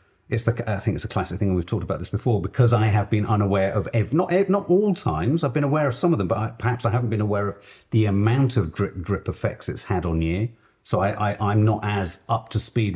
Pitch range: 100-135 Hz